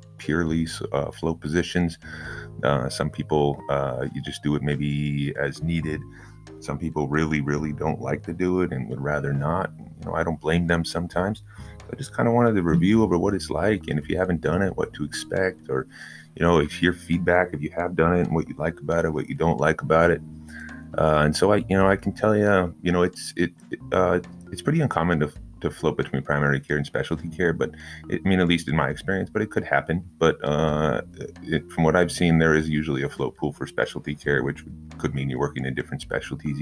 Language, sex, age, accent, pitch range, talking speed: English, male, 30-49, American, 70-90 Hz, 235 wpm